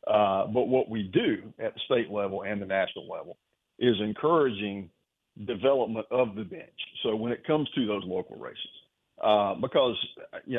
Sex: male